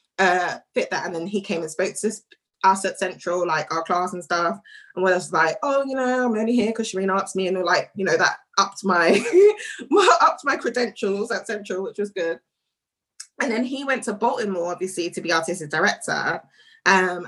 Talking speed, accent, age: 210 wpm, British, 20-39